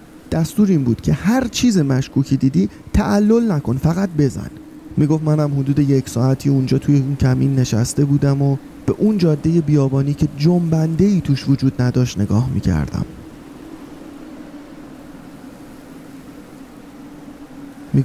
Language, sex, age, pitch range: Persian, male, 30-49, 135-190 Hz